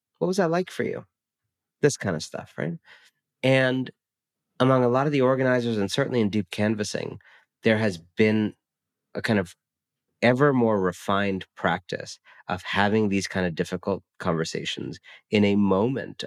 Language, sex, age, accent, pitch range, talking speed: English, male, 40-59, American, 85-110 Hz, 160 wpm